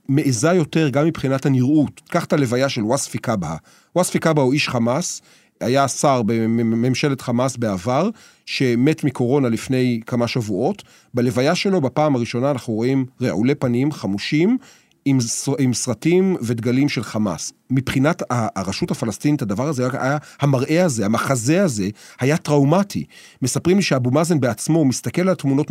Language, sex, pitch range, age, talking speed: Hebrew, male, 125-160 Hz, 40-59, 140 wpm